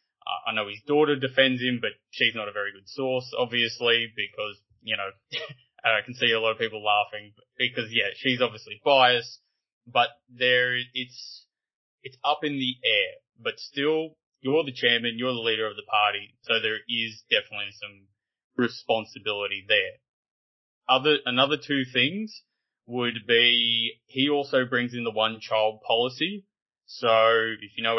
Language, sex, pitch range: English, male, 110-130 Hz